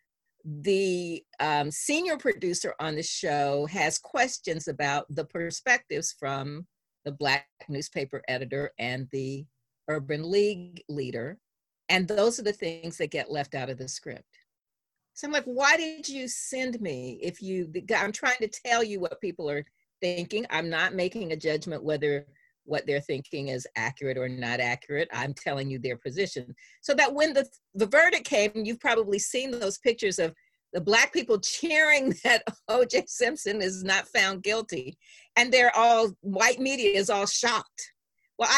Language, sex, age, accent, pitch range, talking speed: English, female, 50-69, American, 150-250 Hz, 165 wpm